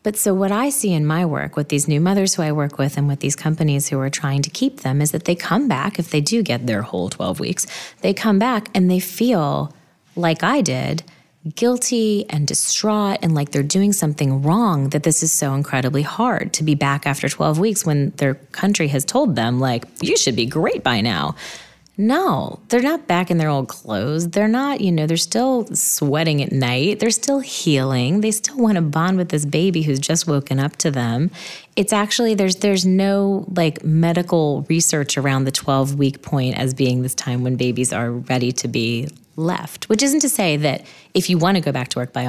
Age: 30-49